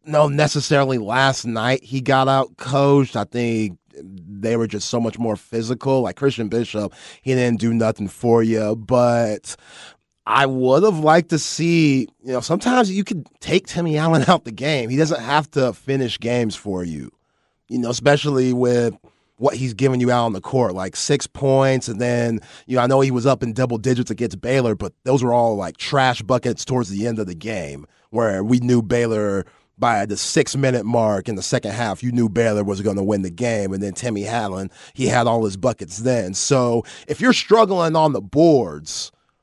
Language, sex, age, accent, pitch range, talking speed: English, male, 30-49, American, 115-145 Hz, 200 wpm